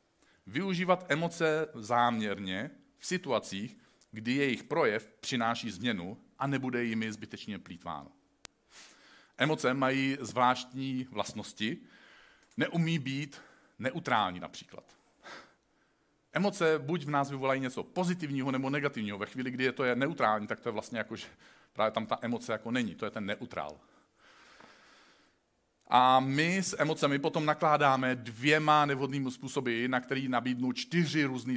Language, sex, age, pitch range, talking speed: Czech, male, 40-59, 125-145 Hz, 130 wpm